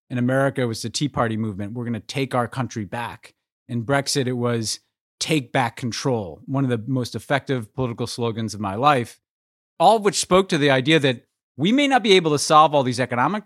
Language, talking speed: English, 225 wpm